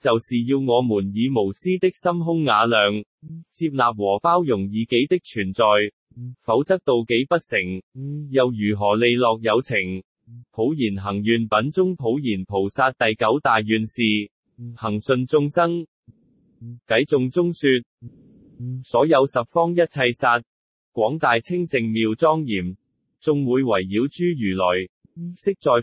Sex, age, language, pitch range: male, 20-39, Chinese, 110-155 Hz